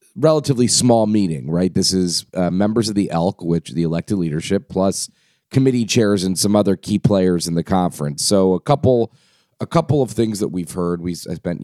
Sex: male